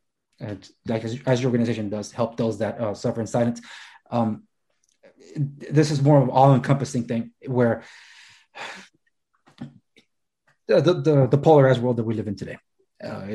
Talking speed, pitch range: 150 wpm, 115-140 Hz